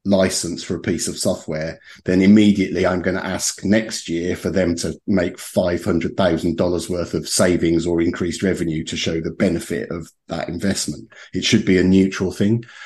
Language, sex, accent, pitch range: English, male, British, 90-110 Hz